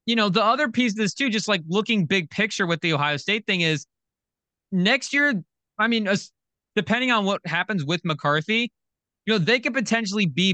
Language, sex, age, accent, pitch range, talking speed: English, male, 20-39, American, 125-185 Hz, 200 wpm